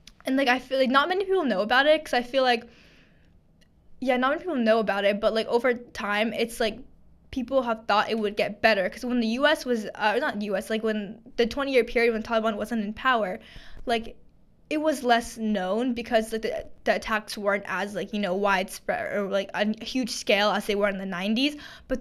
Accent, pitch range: American, 205-240 Hz